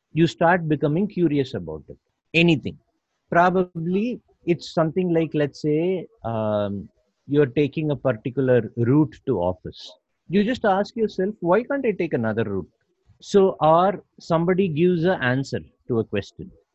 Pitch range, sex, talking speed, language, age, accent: 120-180 Hz, male, 145 wpm, English, 50-69, Indian